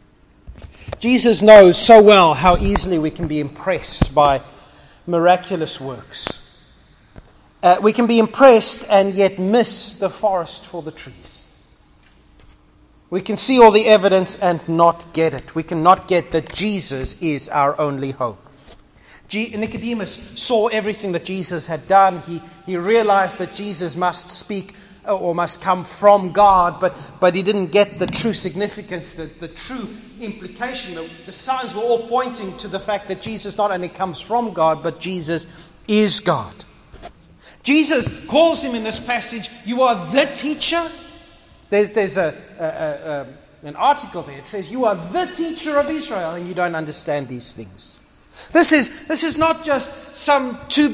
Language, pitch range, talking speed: English, 170-230 Hz, 165 wpm